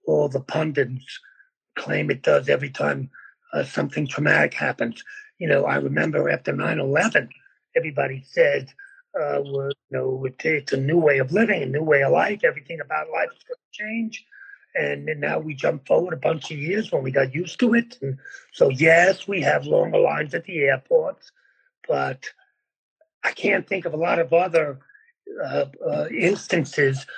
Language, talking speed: English, 175 wpm